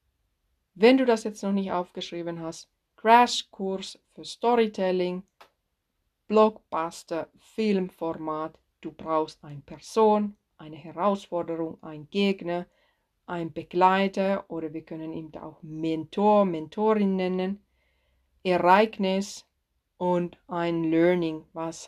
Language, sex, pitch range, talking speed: German, female, 165-235 Hz, 100 wpm